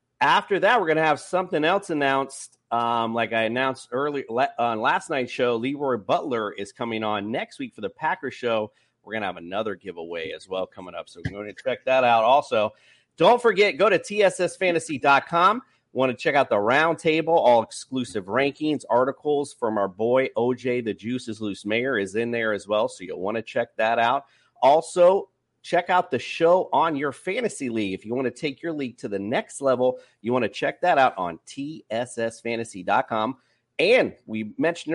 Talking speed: 205 wpm